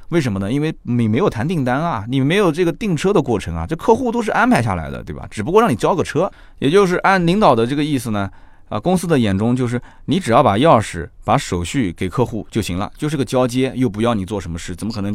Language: Chinese